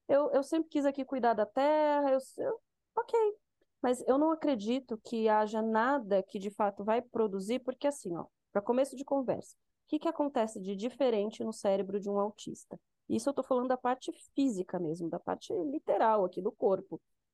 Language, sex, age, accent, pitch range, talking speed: Portuguese, female, 30-49, Brazilian, 200-265 Hz, 190 wpm